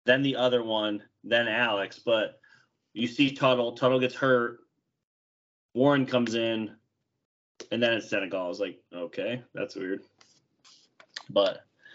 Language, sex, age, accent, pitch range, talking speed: English, male, 30-49, American, 105-125 Hz, 135 wpm